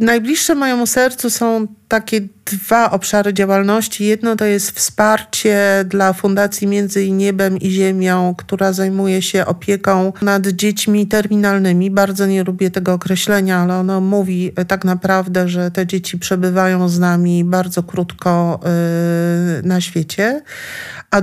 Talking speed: 130 wpm